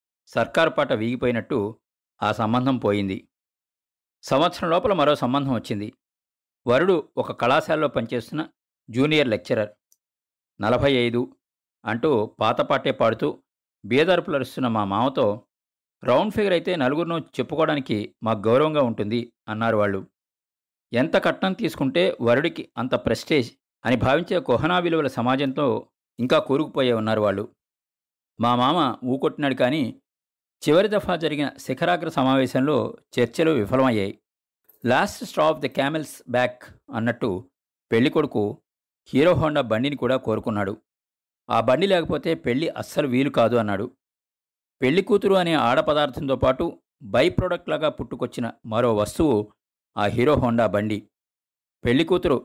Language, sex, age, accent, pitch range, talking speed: Telugu, male, 50-69, native, 105-150 Hz, 110 wpm